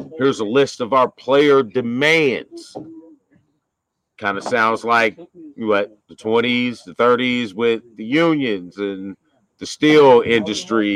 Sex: male